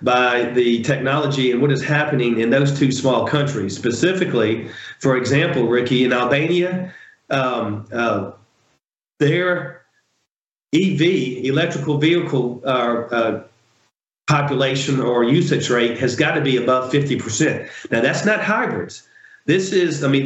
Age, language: 40-59, English